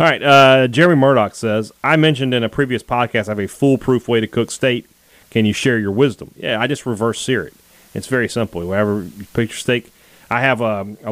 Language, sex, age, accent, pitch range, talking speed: English, male, 30-49, American, 105-125 Hz, 230 wpm